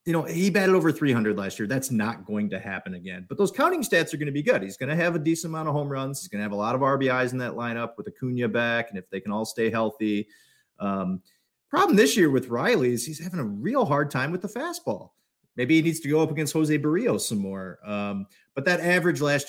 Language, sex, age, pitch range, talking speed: English, male, 30-49, 105-155 Hz, 265 wpm